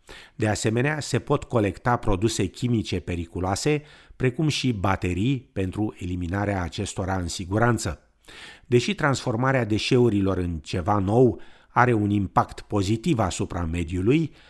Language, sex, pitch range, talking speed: Romanian, male, 95-130 Hz, 115 wpm